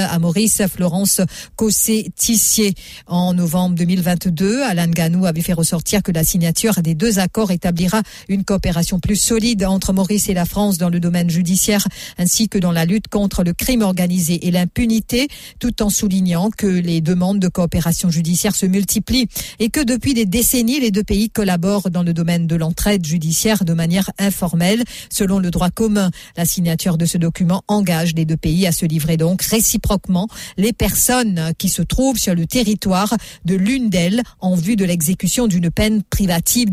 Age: 50-69